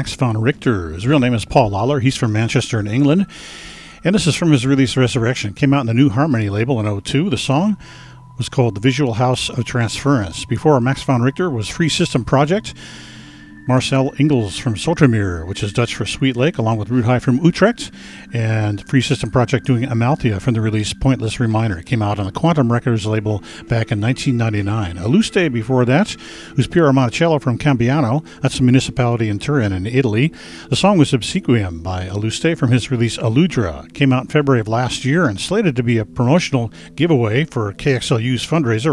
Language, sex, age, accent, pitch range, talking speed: English, male, 50-69, American, 110-145 Hz, 195 wpm